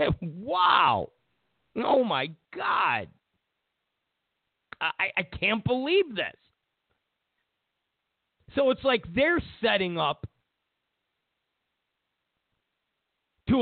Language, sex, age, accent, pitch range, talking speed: English, male, 50-69, American, 160-245 Hz, 70 wpm